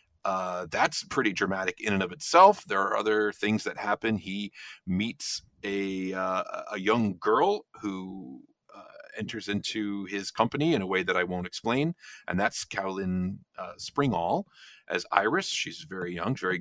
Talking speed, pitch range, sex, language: 165 wpm, 90-130 Hz, male, English